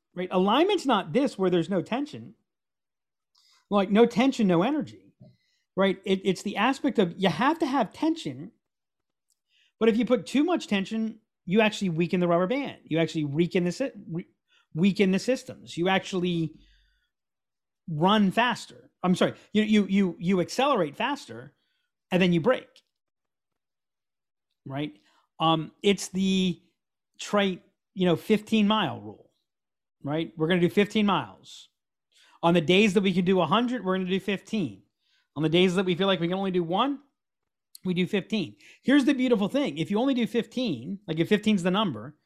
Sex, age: male, 40-59